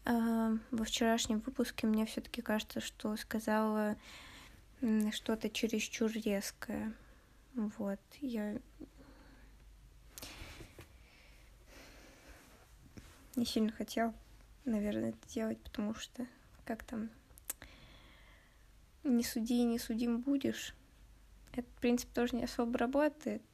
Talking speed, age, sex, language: 90 wpm, 20-39, female, Russian